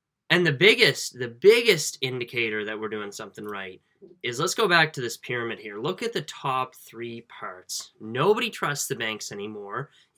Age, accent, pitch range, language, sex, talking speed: 10-29, American, 115-165 Hz, English, male, 185 wpm